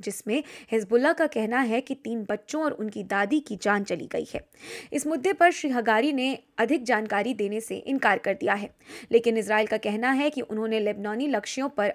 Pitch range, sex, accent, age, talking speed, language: 205-275 Hz, female, native, 20-39, 200 wpm, Hindi